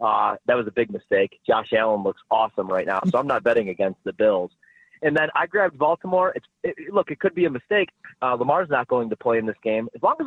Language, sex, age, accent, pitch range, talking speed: English, male, 30-49, American, 125-180 Hz, 255 wpm